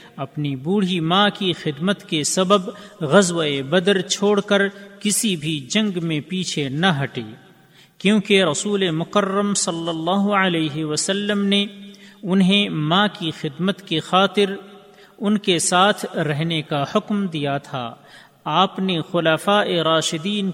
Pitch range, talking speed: 155-200 Hz, 130 wpm